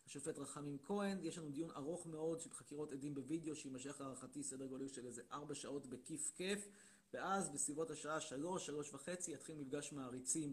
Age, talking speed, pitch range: 30-49, 175 wpm, 135-175 Hz